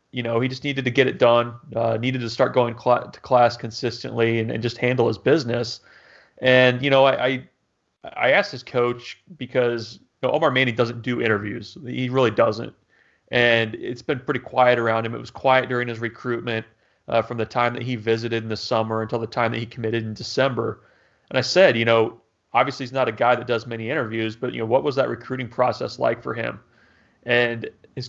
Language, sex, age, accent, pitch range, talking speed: English, male, 30-49, American, 115-125 Hz, 210 wpm